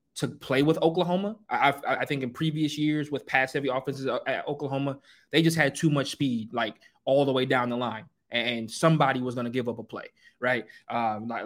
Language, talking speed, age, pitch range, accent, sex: English, 210 wpm, 20-39, 130-160 Hz, American, male